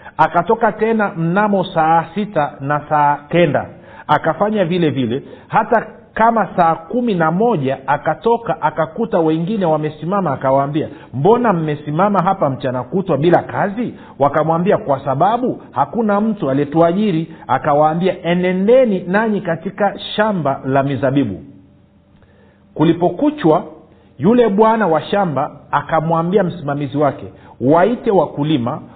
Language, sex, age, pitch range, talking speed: Swahili, male, 50-69, 145-195 Hz, 110 wpm